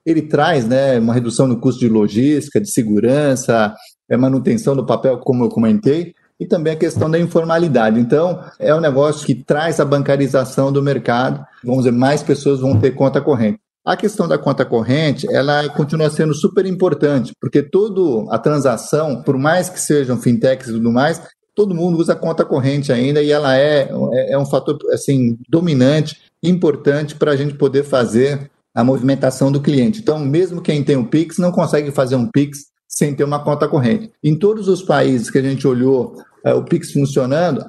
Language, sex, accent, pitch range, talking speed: Portuguese, male, Brazilian, 130-155 Hz, 185 wpm